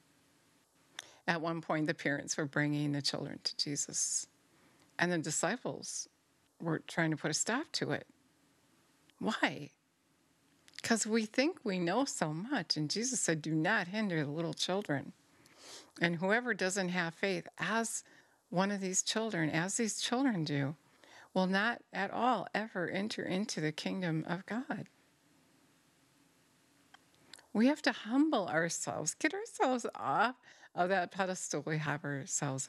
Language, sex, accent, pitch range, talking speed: English, female, American, 160-230 Hz, 145 wpm